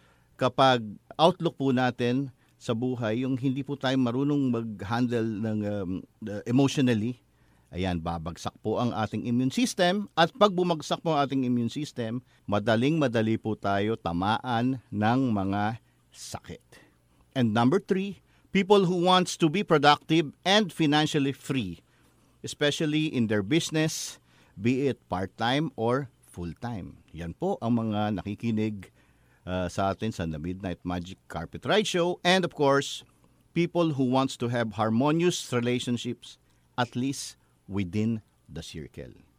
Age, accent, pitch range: 50-69, Filipino, 100-150 Hz